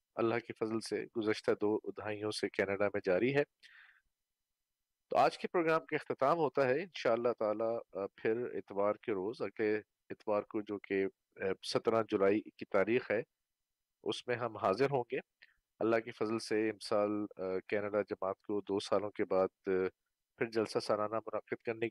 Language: Urdu